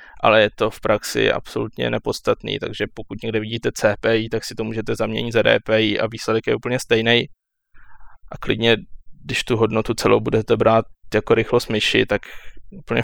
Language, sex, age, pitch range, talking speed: Czech, male, 20-39, 110-115 Hz, 170 wpm